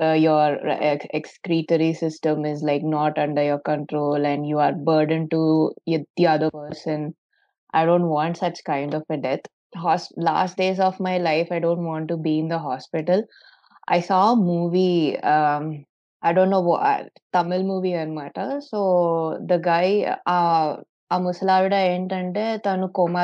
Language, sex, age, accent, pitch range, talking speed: Telugu, female, 20-39, native, 160-185 Hz, 165 wpm